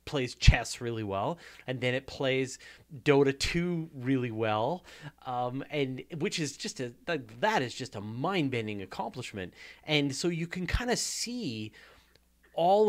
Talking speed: 150 wpm